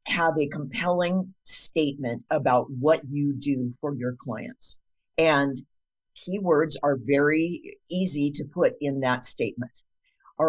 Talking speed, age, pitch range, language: 125 wpm, 50-69, 130-160 Hz, English